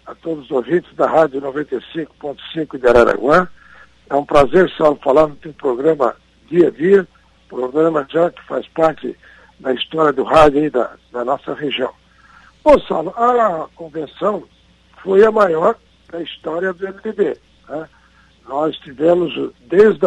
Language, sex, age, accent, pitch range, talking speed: Portuguese, male, 60-79, Brazilian, 150-190 Hz, 145 wpm